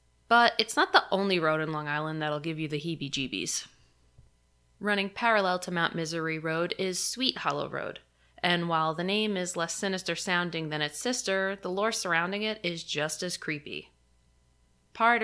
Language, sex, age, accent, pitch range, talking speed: English, female, 20-39, American, 155-195 Hz, 175 wpm